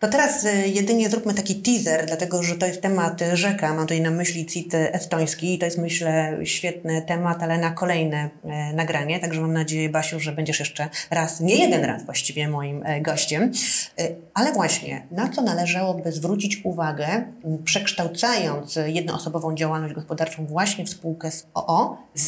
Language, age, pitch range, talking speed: Polish, 30-49, 160-195 Hz, 160 wpm